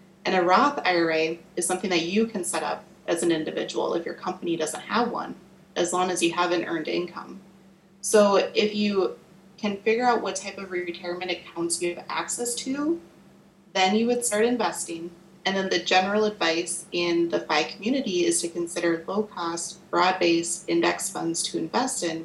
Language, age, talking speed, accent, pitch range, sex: English, 30-49, 180 wpm, American, 170-195 Hz, female